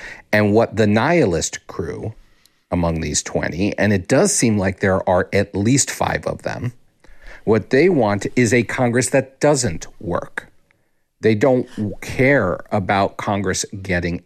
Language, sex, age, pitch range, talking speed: English, male, 50-69, 100-140 Hz, 145 wpm